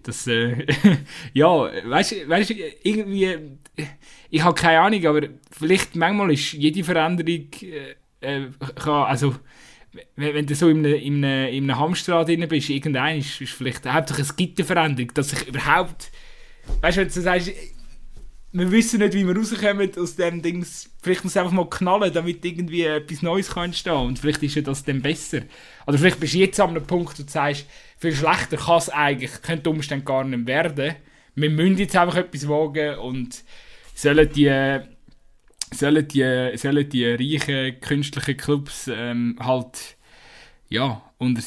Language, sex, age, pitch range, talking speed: German, male, 20-39, 130-160 Hz, 165 wpm